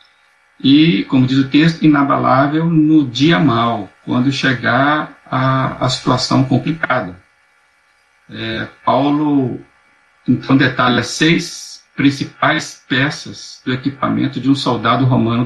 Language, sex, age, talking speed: Portuguese, male, 60-79, 110 wpm